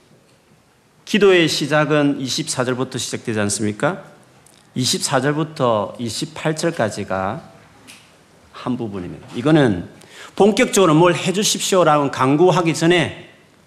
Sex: male